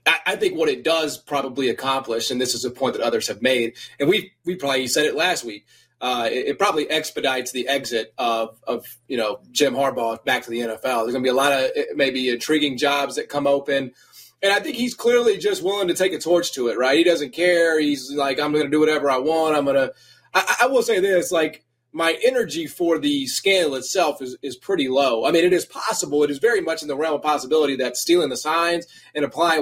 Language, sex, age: English, male, 30-49